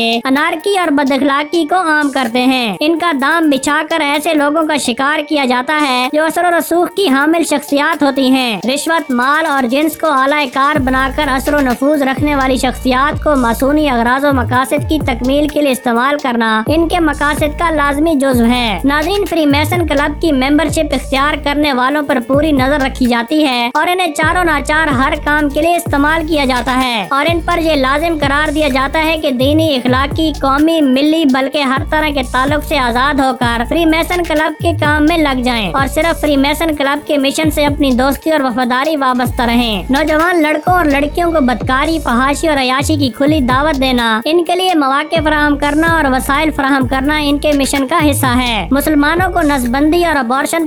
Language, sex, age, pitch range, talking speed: Urdu, male, 20-39, 265-315 Hz, 200 wpm